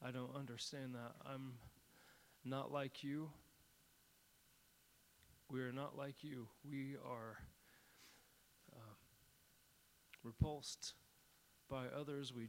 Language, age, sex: English, 30-49, male